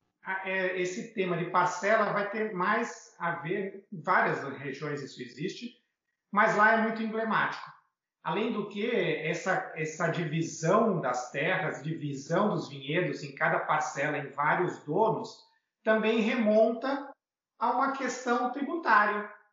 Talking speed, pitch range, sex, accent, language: 130 wpm, 155-210 Hz, male, Brazilian, Portuguese